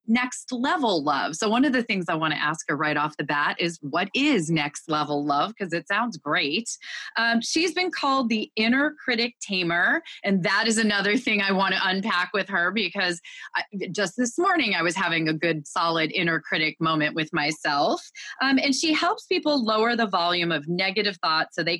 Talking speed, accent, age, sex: 205 wpm, American, 30-49, female